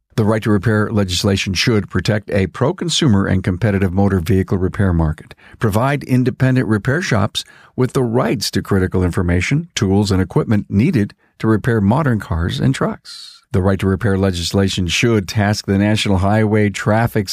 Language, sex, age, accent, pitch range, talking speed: English, male, 50-69, American, 95-125 Hz, 145 wpm